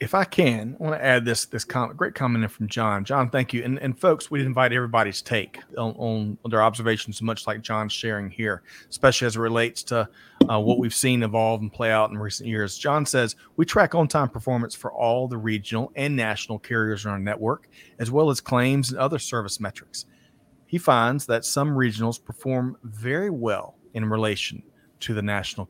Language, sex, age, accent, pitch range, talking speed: English, male, 40-59, American, 110-130 Hz, 200 wpm